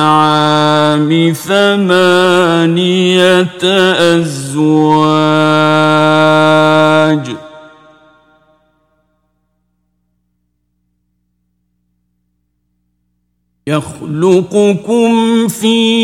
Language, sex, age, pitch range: Persian, male, 50-69, 155-220 Hz